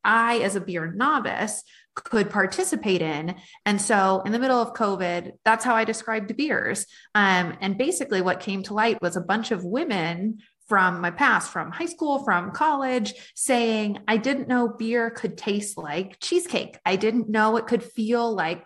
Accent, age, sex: American, 30-49, female